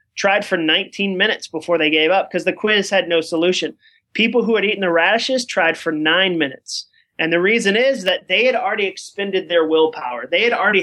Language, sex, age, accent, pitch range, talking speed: English, male, 30-49, American, 170-210 Hz, 210 wpm